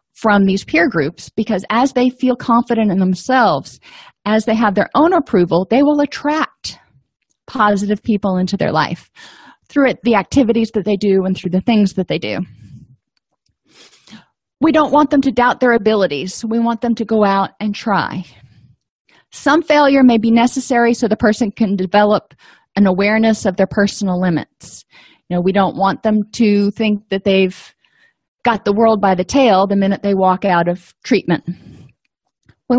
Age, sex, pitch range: 30-49, female, 190-245 Hz